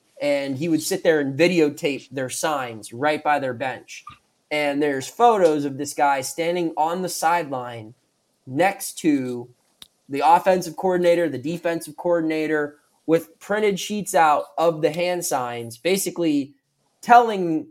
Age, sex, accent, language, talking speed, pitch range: 20-39, male, American, English, 140 wpm, 140-175 Hz